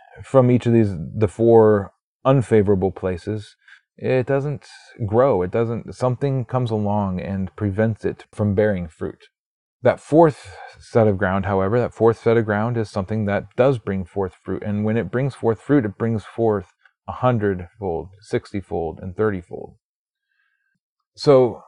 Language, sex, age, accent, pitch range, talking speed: English, male, 30-49, American, 100-140 Hz, 150 wpm